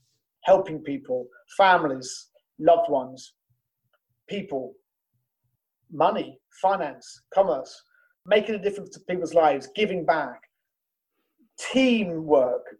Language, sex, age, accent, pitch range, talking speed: English, male, 40-59, British, 165-225 Hz, 85 wpm